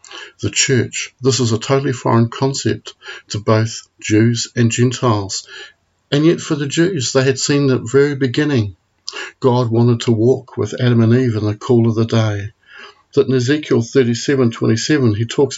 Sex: male